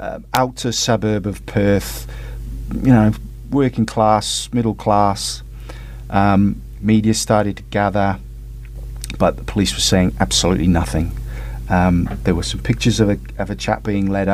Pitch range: 90-110 Hz